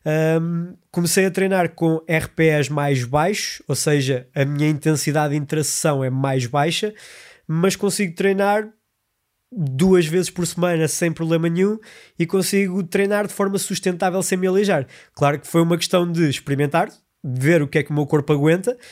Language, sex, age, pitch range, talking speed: Portuguese, male, 20-39, 155-190 Hz, 165 wpm